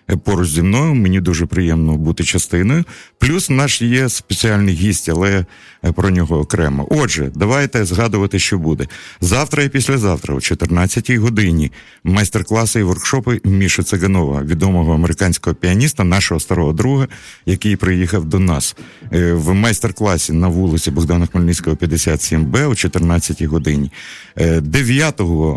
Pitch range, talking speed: 85-105 Hz, 130 wpm